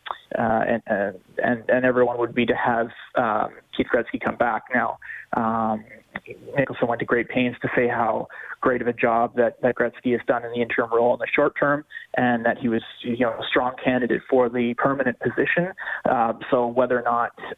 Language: English